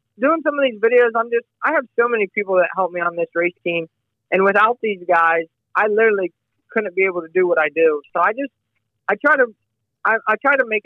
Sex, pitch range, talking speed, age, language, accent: male, 180-215 Hz, 225 wpm, 20-39, English, American